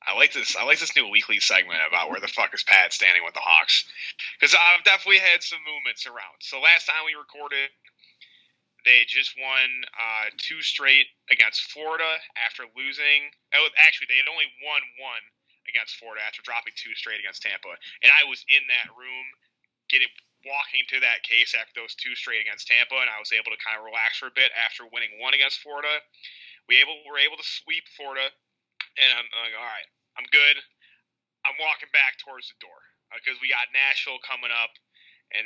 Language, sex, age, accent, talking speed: English, male, 30-49, American, 200 wpm